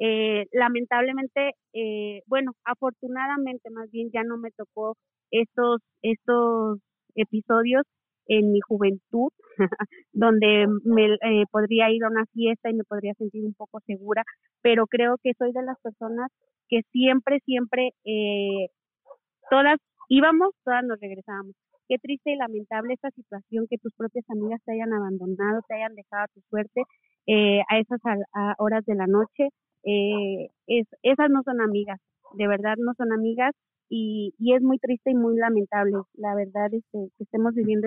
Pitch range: 210-250 Hz